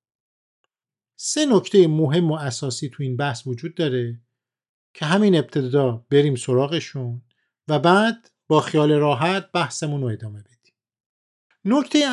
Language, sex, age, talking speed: Persian, male, 50-69, 125 wpm